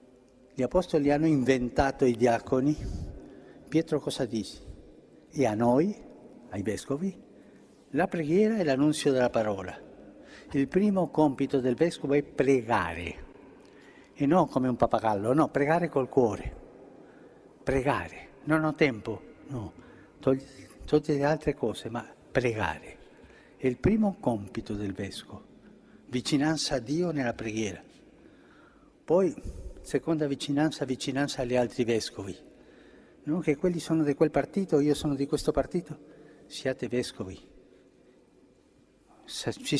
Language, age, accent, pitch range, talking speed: Italian, 60-79, native, 120-155 Hz, 120 wpm